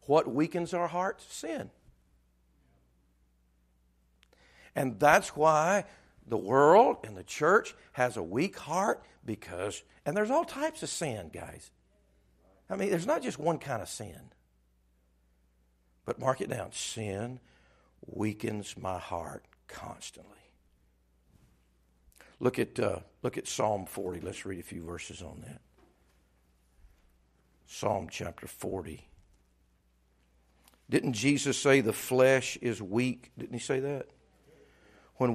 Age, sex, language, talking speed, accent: 60-79, male, English, 120 wpm, American